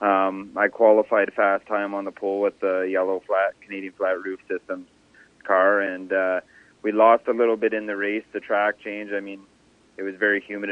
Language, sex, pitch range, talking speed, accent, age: English, male, 95-110 Hz, 200 wpm, American, 30-49